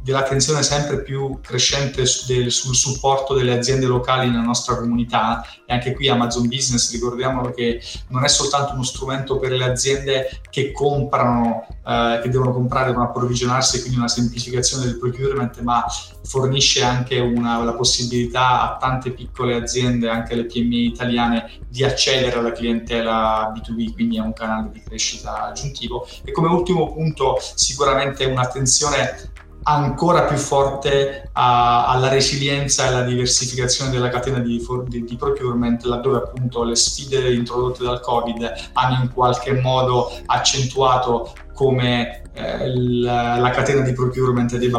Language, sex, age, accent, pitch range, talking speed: Italian, male, 20-39, native, 120-135 Hz, 140 wpm